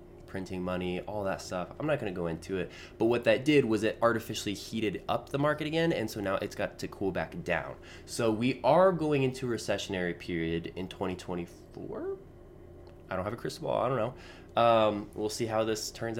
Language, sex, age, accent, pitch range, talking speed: English, male, 20-39, American, 90-115 Hz, 205 wpm